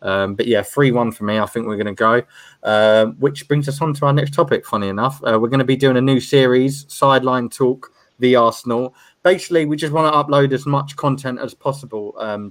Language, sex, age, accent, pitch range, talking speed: English, male, 20-39, British, 120-145 Hz, 235 wpm